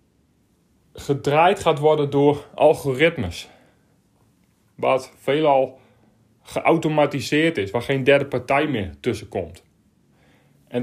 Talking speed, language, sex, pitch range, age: 95 wpm, Dutch, male, 135-160 Hz, 30-49